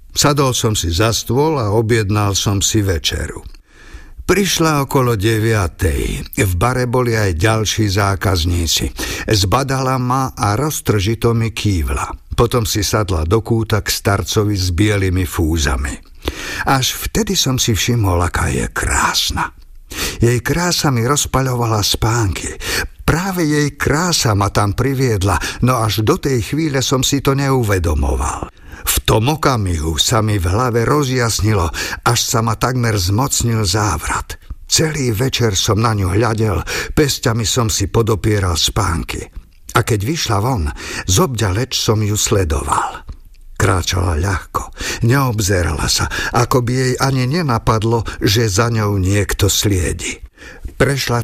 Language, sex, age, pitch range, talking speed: Slovak, male, 50-69, 95-125 Hz, 130 wpm